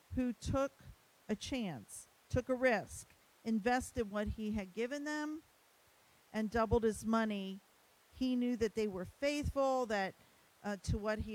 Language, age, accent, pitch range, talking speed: English, 50-69, American, 210-265 Hz, 150 wpm